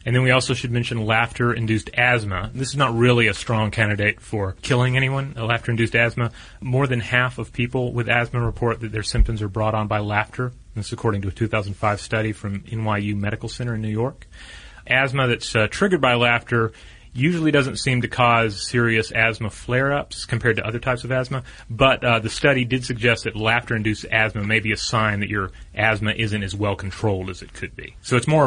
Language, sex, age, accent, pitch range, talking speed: English, male, 30-49, American, 105-120 Hz, 205 wpm